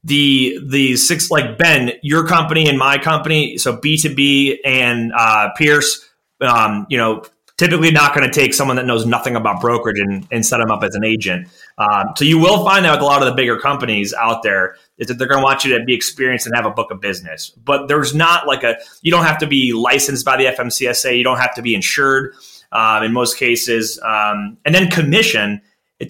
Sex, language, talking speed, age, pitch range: male, English, 230 wpm, 30-49, 120-150 Hz